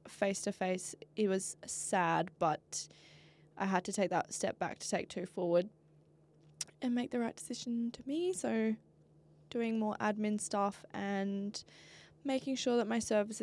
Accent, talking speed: Australian, 160 wpm